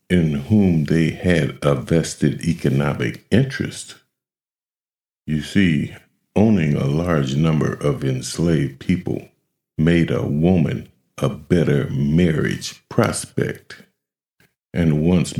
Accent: American